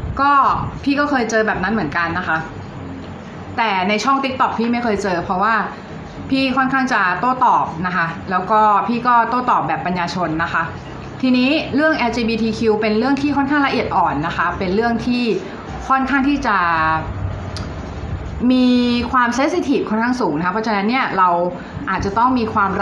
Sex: female